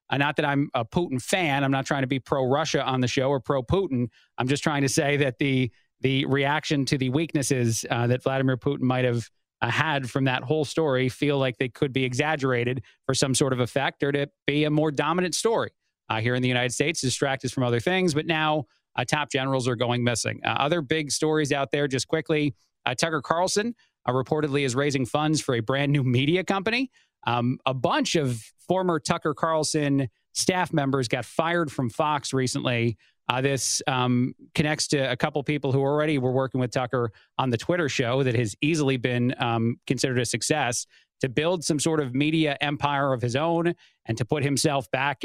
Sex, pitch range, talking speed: male, 130-150 Hz, 205 wpm